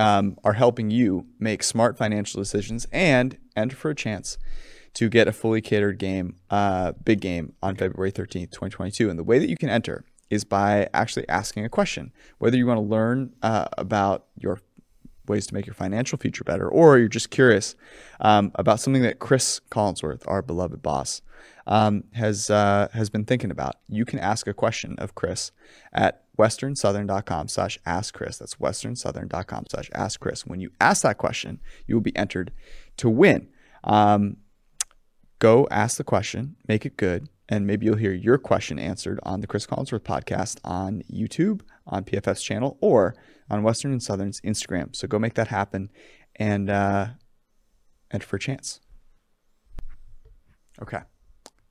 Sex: male